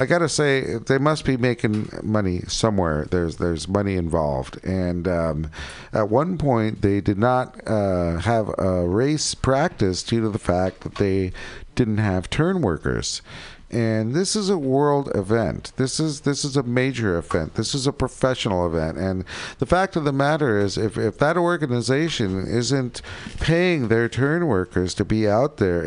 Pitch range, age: 100-140 Hz, 50-69